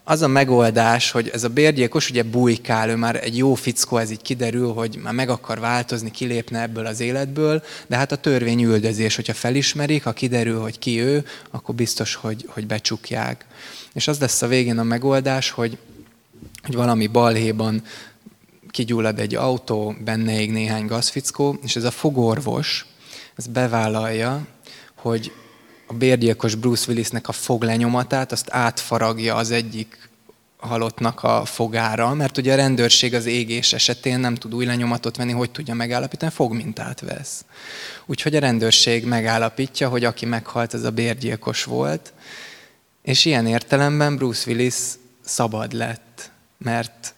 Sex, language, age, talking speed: male, Hungarian, 20-39, 145 wpm